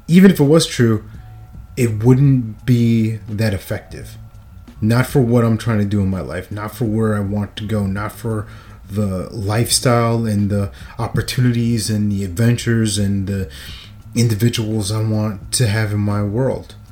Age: 30-49